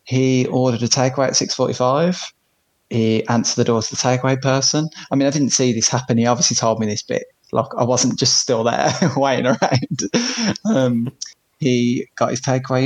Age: 20-39